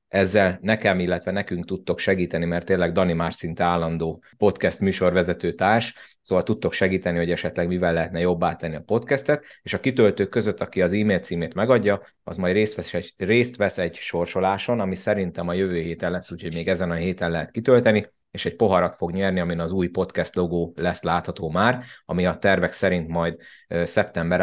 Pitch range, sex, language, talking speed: 85-95 Hz, male, Hungarian, 185 wpm